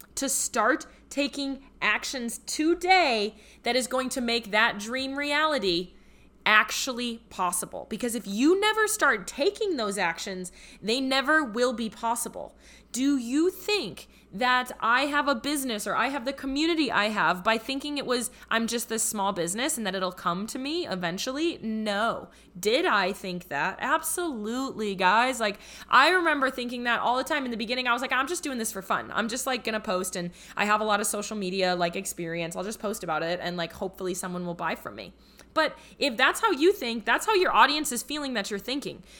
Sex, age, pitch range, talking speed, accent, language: female, 20-39, 215-290 Hz, 195 wpm, American, English